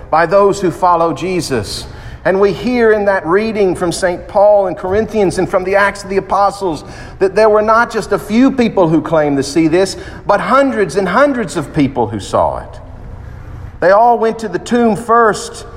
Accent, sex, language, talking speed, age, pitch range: American, male, English, 200 wpm, 50-69, 160-215 Hz